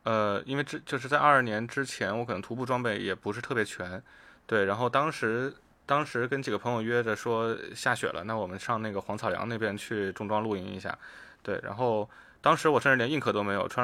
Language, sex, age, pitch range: Chinese, male, 20-39, 105-125 Hz